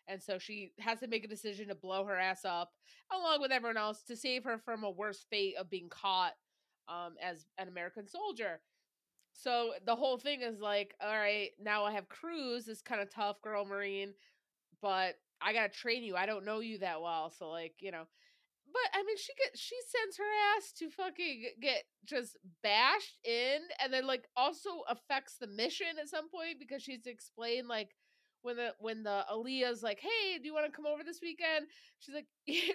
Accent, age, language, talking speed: American, 20-39, English, 205 wpm